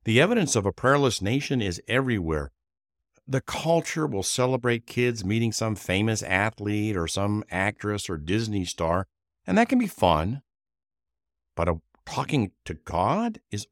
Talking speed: 145 wpm